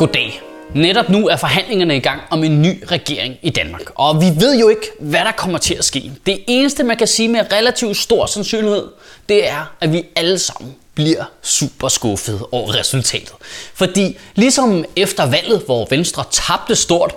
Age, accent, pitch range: 20-39, native, 170-225 Hz